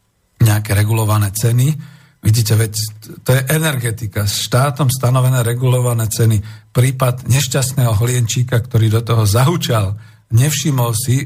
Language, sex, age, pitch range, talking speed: Slovak, male, 50-69, 110-135 Hz, 115 wpm